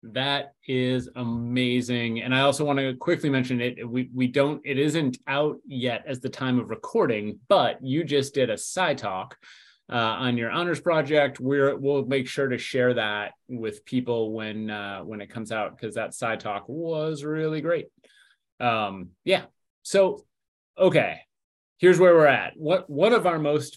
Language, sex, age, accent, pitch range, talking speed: English, male, 30-49, American, 120-145 Hz, 180 wpm